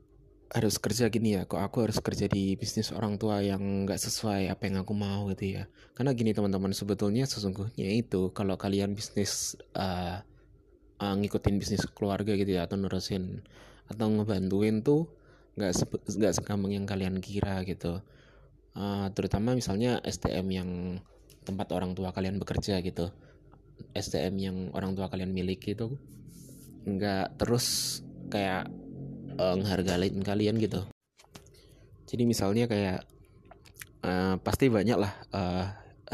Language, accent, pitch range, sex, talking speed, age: Indonesian, native, 95-110 Hz, male, 135 wpm, 20-39